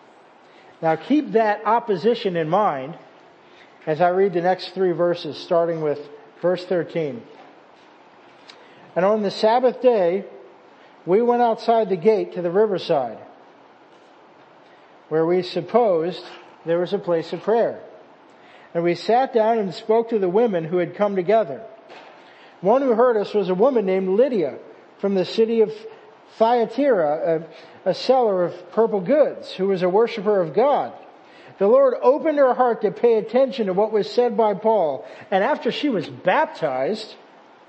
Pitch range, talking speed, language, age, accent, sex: 180-235 Hz, 155 wpm, English, 50-69, American, male